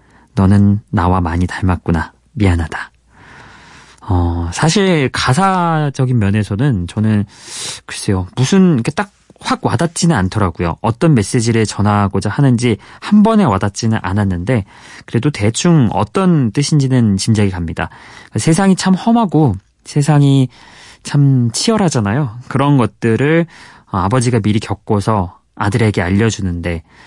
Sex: male